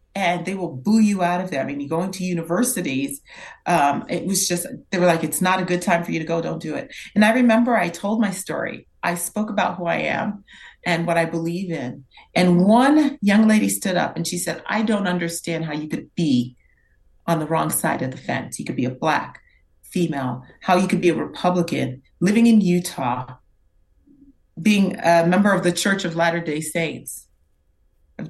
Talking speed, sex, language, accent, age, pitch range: 210 wpm, female, English, American, 40-59, 135-180 Hz